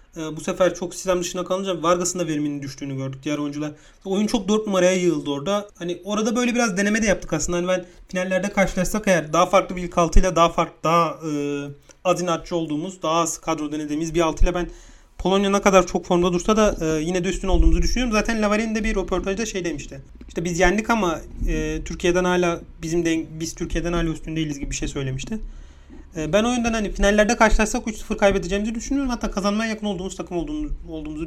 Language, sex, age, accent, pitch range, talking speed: Turkish, male, 40-59, native, 165-210 Hz, 195 wpm